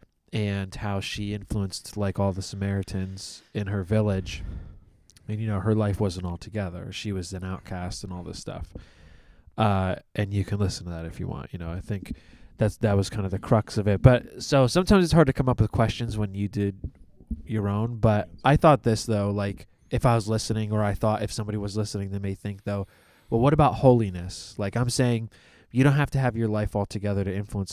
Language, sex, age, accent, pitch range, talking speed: English, male, 20-39, American, 100-120 Hz, 225 wpm